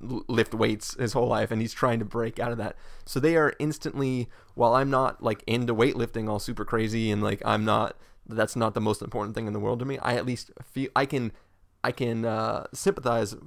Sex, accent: male, American